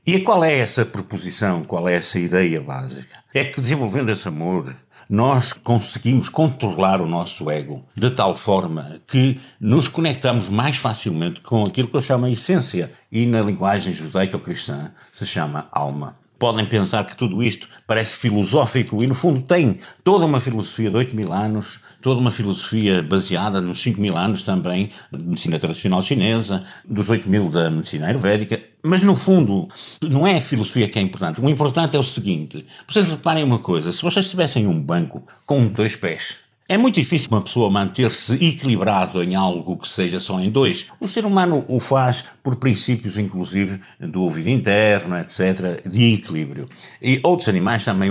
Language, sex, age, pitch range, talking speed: Portuguese, male, 60-79, 95-135 Hz, 175 wpm